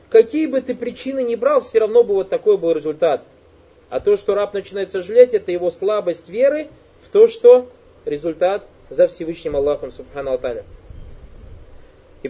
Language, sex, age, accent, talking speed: Russian, male, 20-39, native, 155 wpm